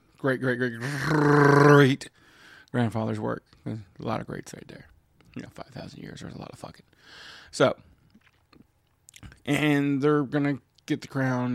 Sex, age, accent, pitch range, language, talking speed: male, 20-39, American, 110-140 Hz, English, 145 wpm